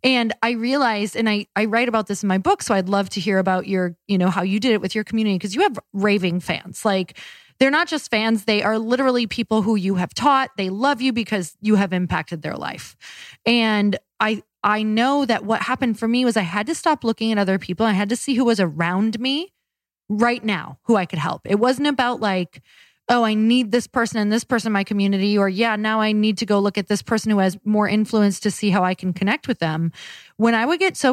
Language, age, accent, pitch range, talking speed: English, 20-39, American, 190-245 Hz, 250 wpm